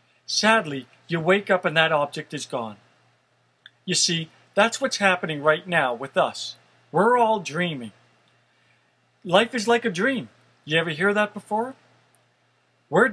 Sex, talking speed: male, 145 wpm